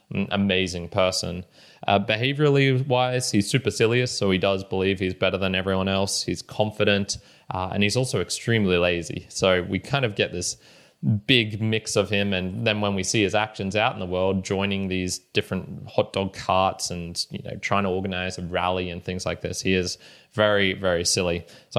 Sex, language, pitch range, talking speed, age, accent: male, English, 95-110 Hz, 190 wpm, 20-39, Australian